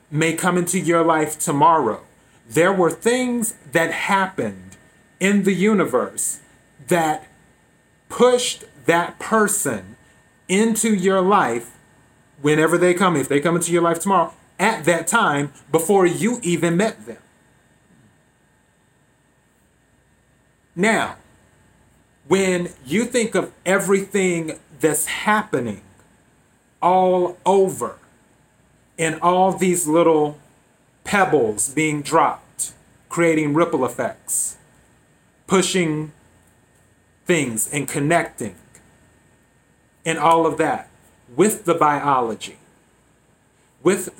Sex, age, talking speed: male, 30-49, 95 wpm